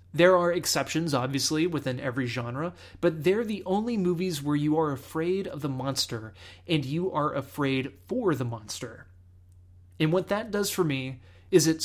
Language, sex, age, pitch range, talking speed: English, male, 30-49, 130-175 Hz, 170 wpm